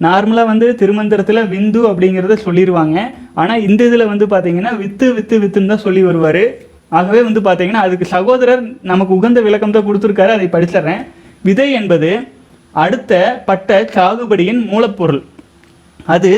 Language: Tamil